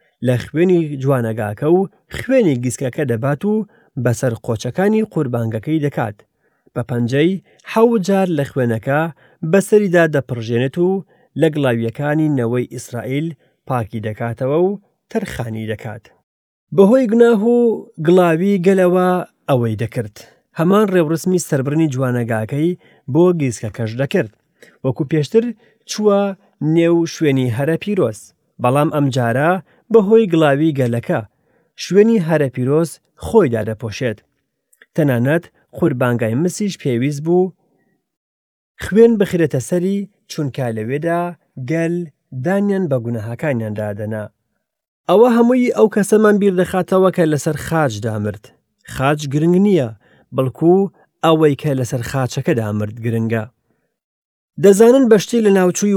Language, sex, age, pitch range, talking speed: English, male, 30-49, 125-185 Hz, 110 wpm